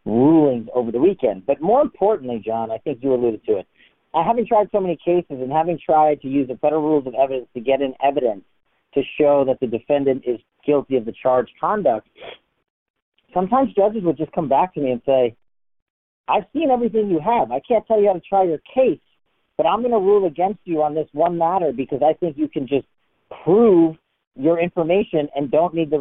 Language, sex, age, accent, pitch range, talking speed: English, male, 40-59, American, 140-180 Hz, 210 wpm